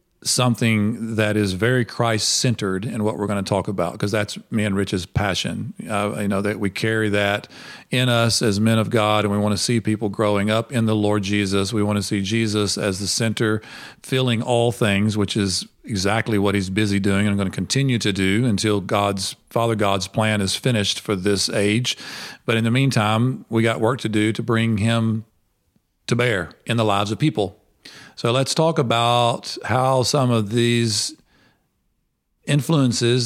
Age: 40-59